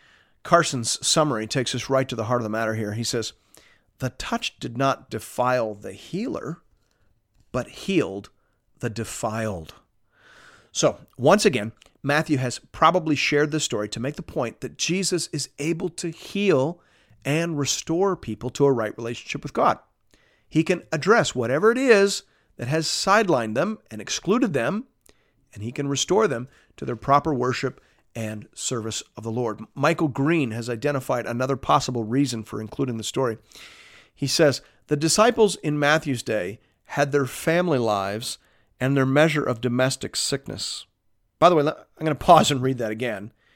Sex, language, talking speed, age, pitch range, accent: male, English, 165 wpm, 40-59, 115-160 Hz, American